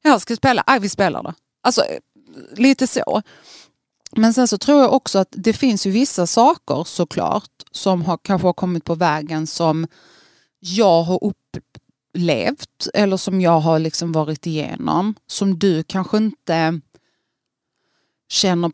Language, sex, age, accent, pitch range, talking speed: Swedish, female, 30-49, native, 165-205 Hz, 145 wpm